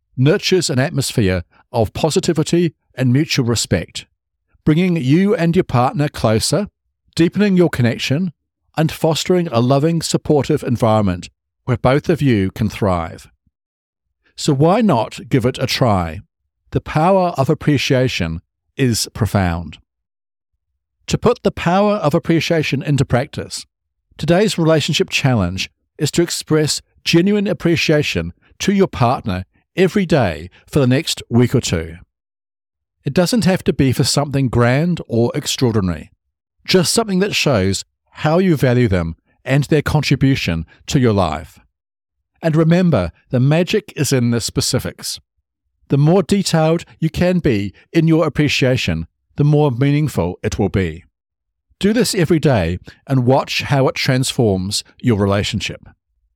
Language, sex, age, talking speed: English, male, 50-69, 135 wpm